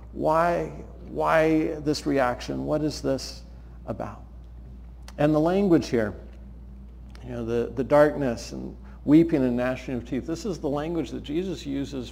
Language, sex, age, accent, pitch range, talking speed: English, male, 50-69, American, 105-150 Hz, 150 wpm